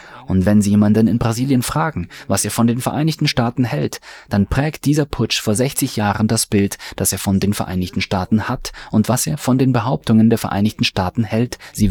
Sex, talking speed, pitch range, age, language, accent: male, 205 wpm, 100-125 Hz, 20-39, German, German